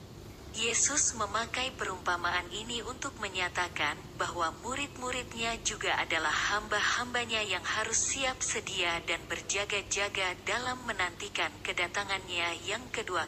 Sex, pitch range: female, 180-225 Hz